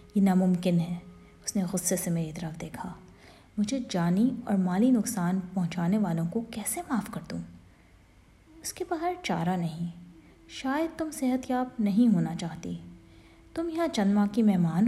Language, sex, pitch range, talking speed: Urdu, female, 165-200 Hz, 160 wpm